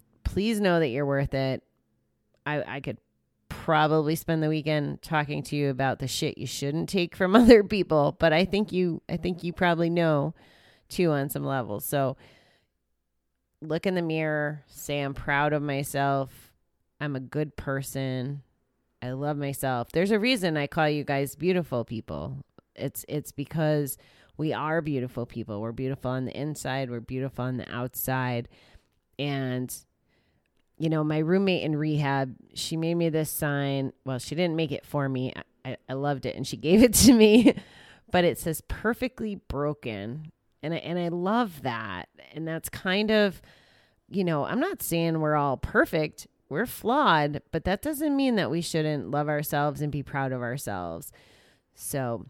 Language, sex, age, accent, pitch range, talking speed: English, female, 30-49, American, 130-165 Hz, 170 wpm